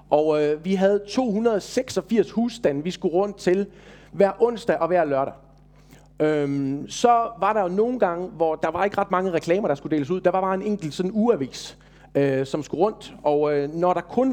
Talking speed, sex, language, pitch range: 205 wpm, male, Danish, 170-220 Hz